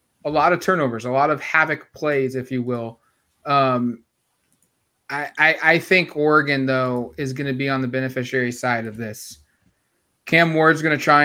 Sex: male